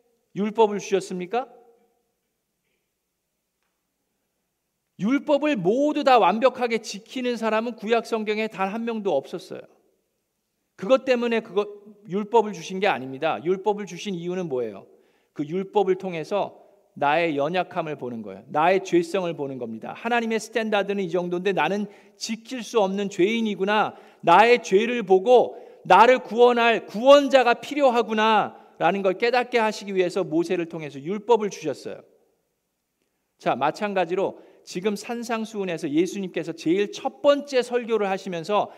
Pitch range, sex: 185-240 Hz, male